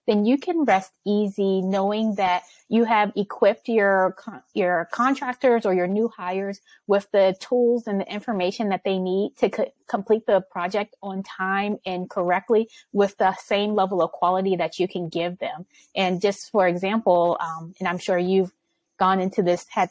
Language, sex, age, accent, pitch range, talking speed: English, female, 20-39, American, 180-210 Hz, 180 wpm